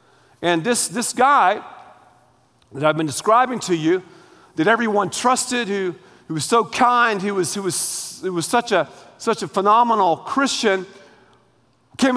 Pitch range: 195-270 Hz